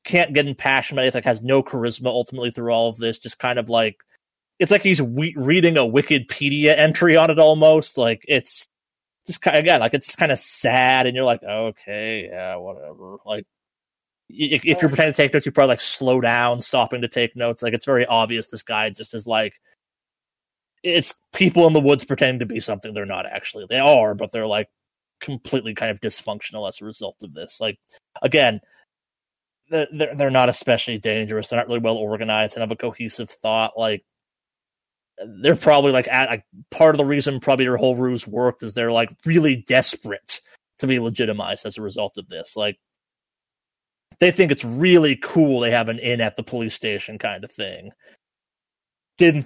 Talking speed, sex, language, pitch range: 190 wpm, male, English, 115-145 Hz